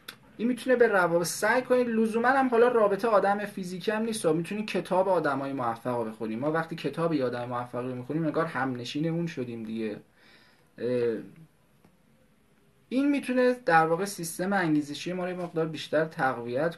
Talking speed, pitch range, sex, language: 155 wpm, 140-200 Hz, male, Persian